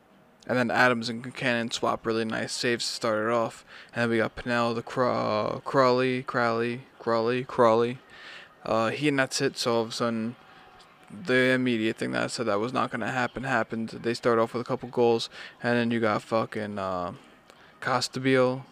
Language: English